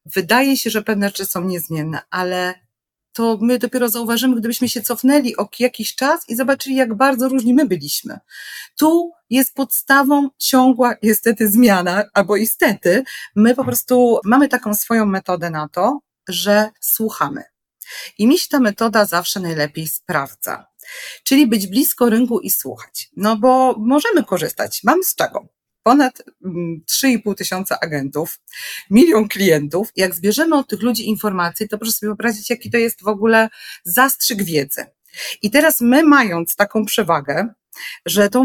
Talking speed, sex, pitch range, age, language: 150 wpm, female, 195-255 Hz, 40-59, Polish